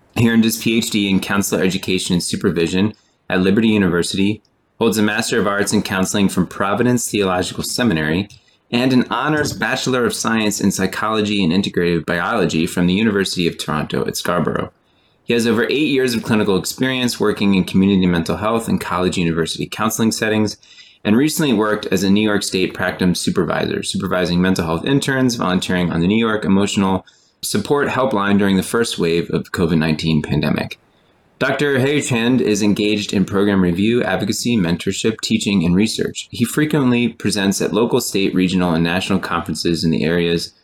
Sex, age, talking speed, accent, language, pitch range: male, 20-39, 170 wpm, American, English, 90-115 Hz